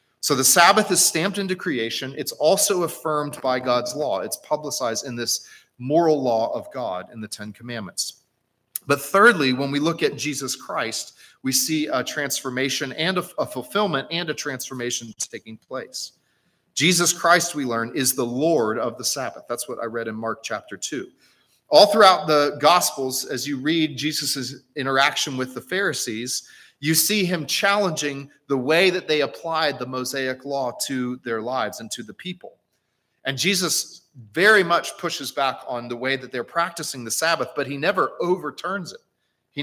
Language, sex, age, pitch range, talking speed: English, male, 40-59, 130-165 Hz, 175 wpm